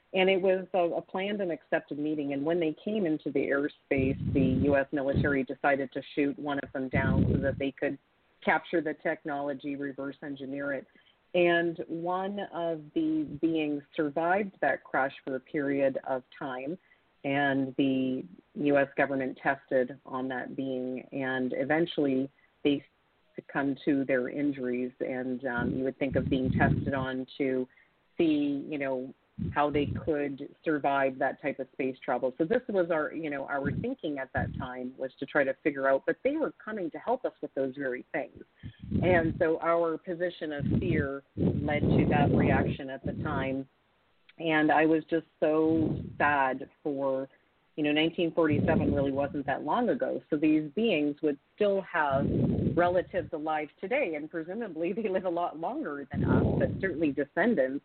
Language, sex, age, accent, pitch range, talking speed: English, female, 40-59, American, 135-165 Hz, 170 wpm